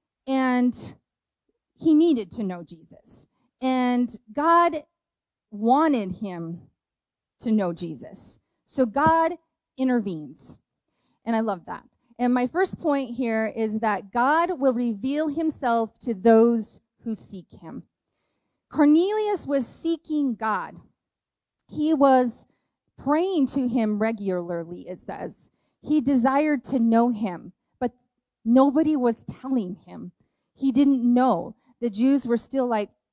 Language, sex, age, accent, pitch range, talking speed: English, female, 30-49, American, 220-280 Hz, 120 wpm